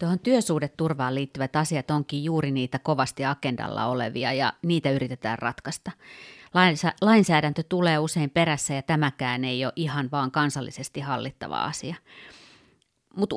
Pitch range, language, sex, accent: 130-165 Hz, Finnish, female, native